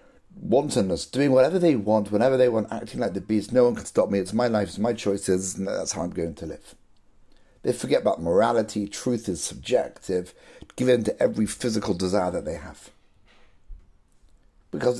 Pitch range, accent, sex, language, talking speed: 95-125 Hz, British, male, English, 190 wpm